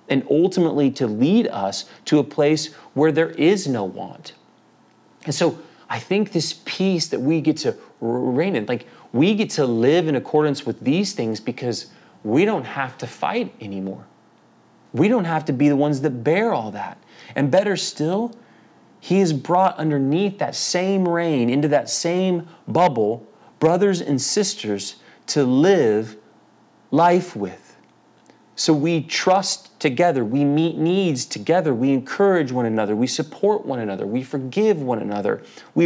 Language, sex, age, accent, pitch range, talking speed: English, male, 30-49, American, 135-175 Hz, 160 wpm